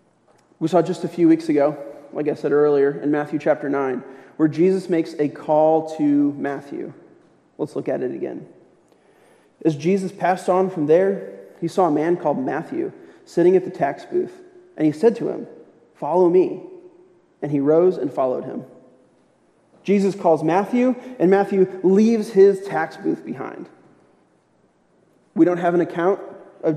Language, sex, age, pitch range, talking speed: English, male, 30-49, 150-195 Hz, 165 wpm